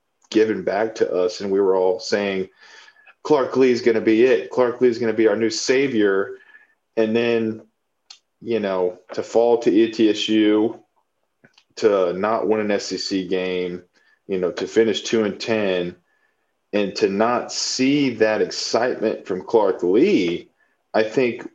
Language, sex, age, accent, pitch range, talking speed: English, male, 40-59, American, 100-170 Hz, 160 wpm